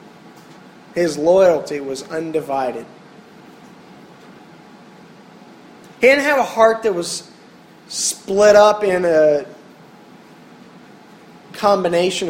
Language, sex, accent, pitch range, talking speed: English, male, American, 150-195 Hz, 80 wpm